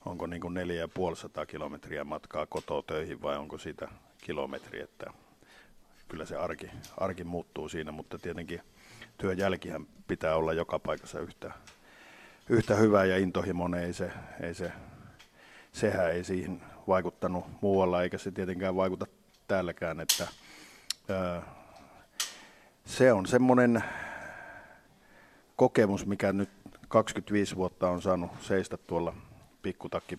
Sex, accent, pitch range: male, native, 85-100 Hz